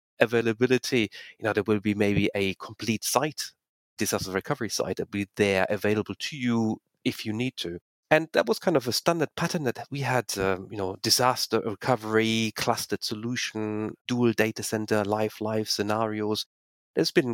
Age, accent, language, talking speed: 40-59, German, English, 175 wpm